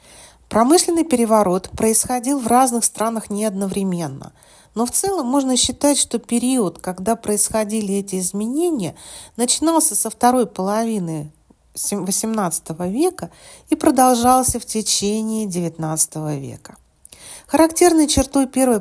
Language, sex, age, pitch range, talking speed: Russian, female, 40-59, 170-240 Hz, 110 wpm